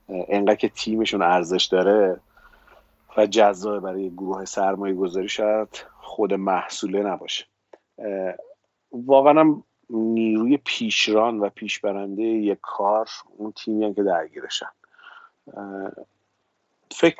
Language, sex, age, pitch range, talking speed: Persian, male, 40-59, 95-115 Hz, 100 wpm